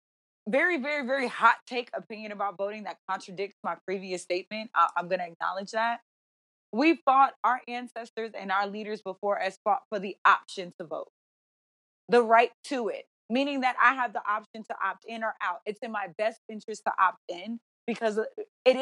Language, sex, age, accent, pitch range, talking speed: English, female, 20-39, American, 195-250 Hz, 185 wpm